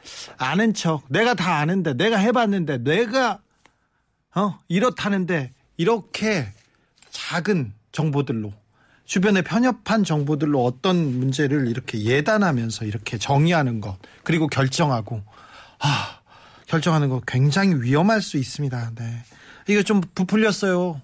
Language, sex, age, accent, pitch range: Korean, male, 40-59, native, 135-185 Hz